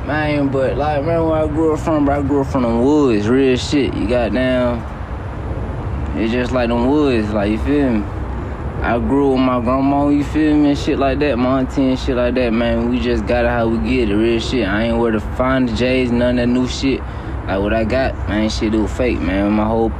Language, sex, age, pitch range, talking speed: English, male, 20-39, 105-130 Hz, 250 wpm